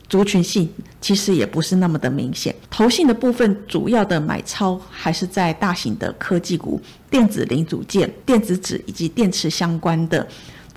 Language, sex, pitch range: Chinese, female, 165-215 Hz